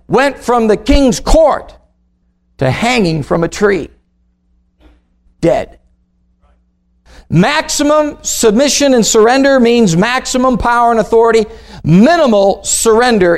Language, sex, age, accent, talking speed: English, male, 50-69, American, 100 wpm